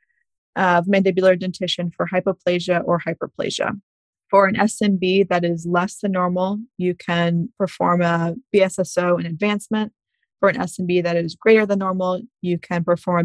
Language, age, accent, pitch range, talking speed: English, 20-39, American, 175-200 Hz, 155 wpm